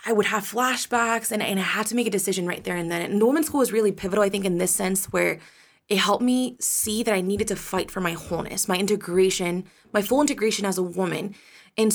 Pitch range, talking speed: 185-215 Hz, 250 wpm